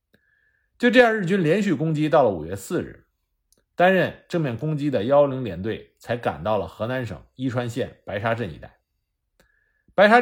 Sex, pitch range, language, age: male, 115-175 Hz, Chinese, 50-69